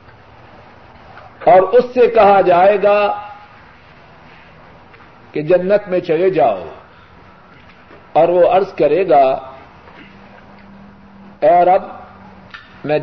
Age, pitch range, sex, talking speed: 50-69, 175-240 Hz, male, 90 wpm